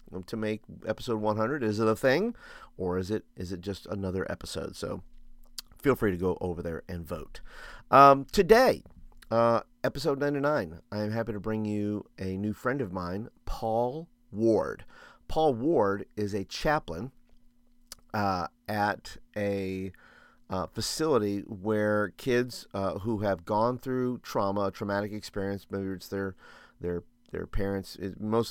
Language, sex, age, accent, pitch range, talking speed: English, male, 40-59, American, 95-115 Hz, 145 wpm